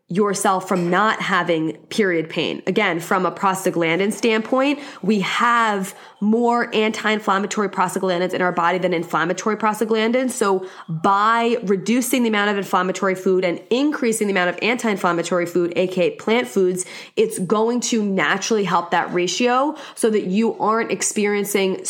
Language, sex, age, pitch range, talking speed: English, female, 20-39, 180-220 Hz, 140 wpm